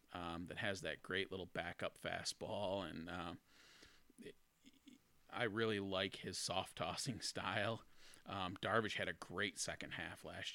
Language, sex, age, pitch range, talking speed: English, male, 30-49, 95-105 Hz, 135 wpm